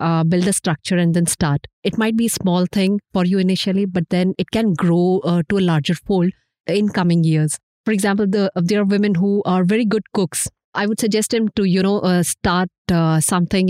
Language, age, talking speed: English, 30-49, 225 wpm